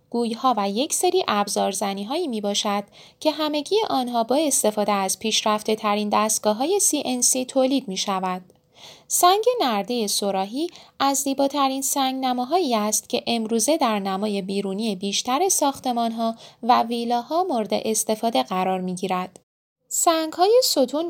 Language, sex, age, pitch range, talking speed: Persian, female, 10-29, 205-275 Hz, 135 wpm